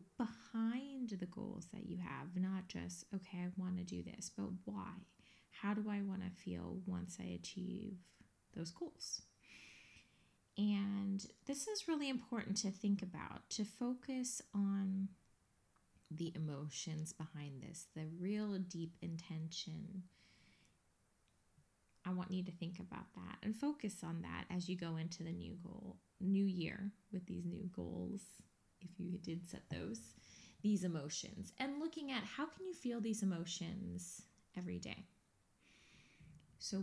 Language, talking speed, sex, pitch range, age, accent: English, 145 wpm, female, 165-200 Hz, 20-39, American